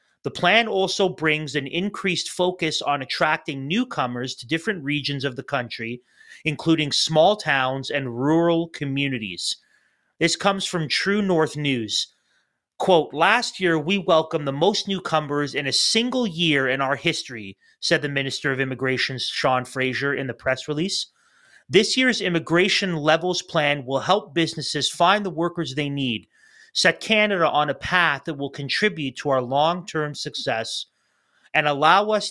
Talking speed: 150 wpm